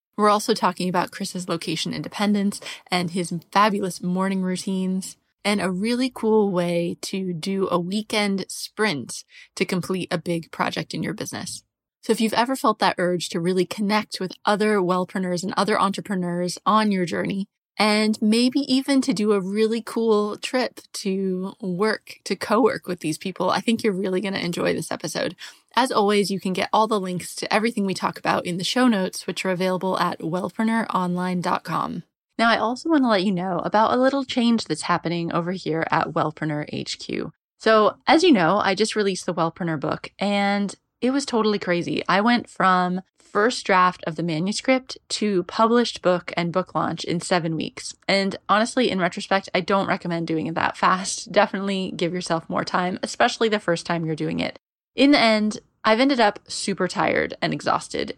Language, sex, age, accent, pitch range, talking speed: English, female, 20-39, American, 180-215 Hz, 185 wpm